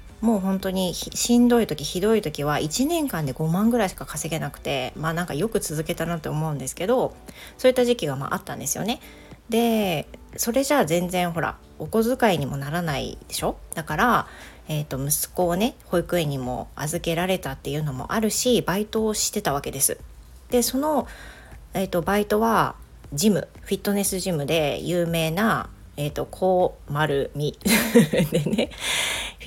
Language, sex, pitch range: Japanese, female, 155-220 Hz